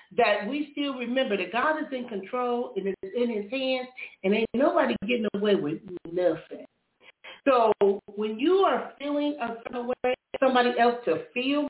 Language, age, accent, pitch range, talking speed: English, 40-59, American, 195-280 Hz, 175 wpm